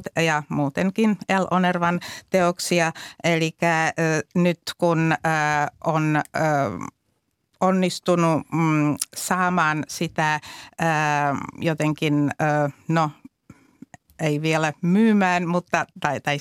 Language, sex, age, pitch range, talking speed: Finnish, female, 60-79, 145-170 Hz, 90 wpm